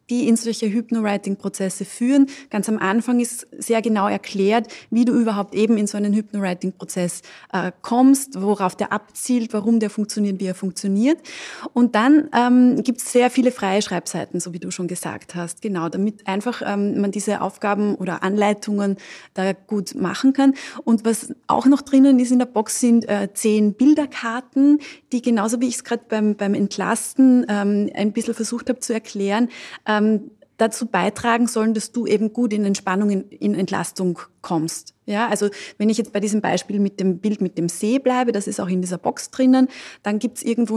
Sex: female